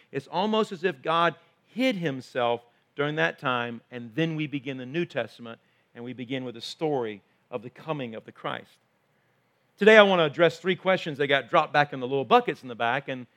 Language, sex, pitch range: English, male, 155-230 Hz